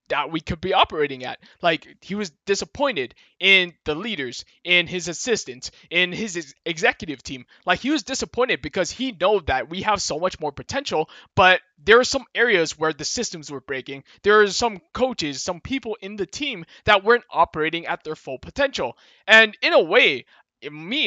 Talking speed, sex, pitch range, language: 185 wpm, male, 165-235 Hz, English